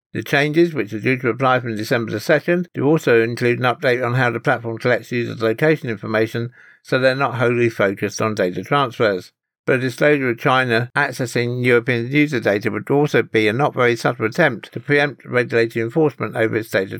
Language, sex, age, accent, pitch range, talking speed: English, male, 60-79, British, 115-130 Hz, 185 wpm